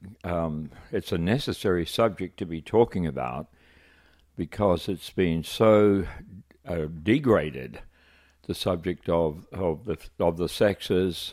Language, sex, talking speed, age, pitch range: English, male, 110 wpm, 60-79, 80-105 Hz